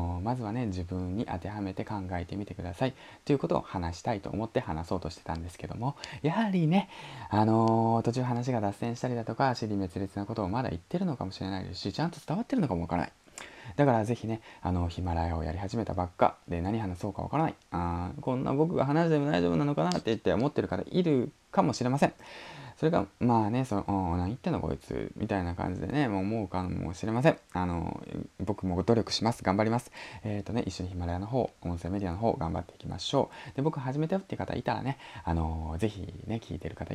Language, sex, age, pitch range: Japanese, male, 20-39, 90-125 Hz